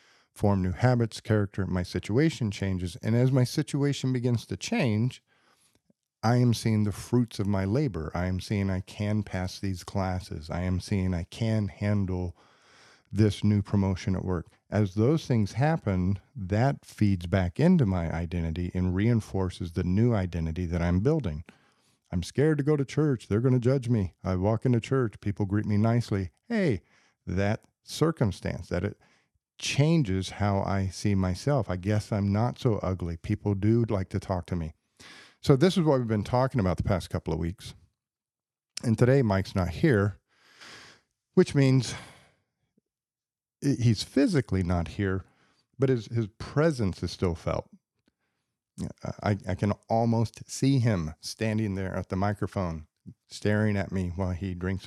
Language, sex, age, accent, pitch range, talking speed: English, male, 50-69, American, 95-120 Hz, 165 wpm